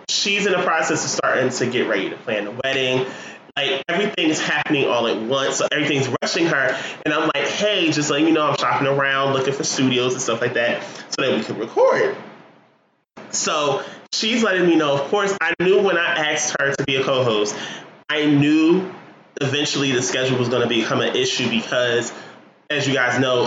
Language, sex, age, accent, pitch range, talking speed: English, male, 20-39, American, 130-155 Hz, 200 wpm